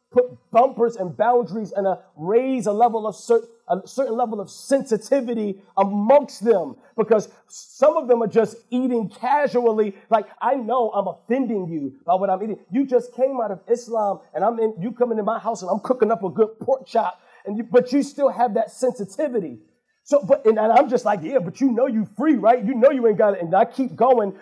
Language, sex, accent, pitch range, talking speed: English, male, American, 210-265 Hz, 220 wpm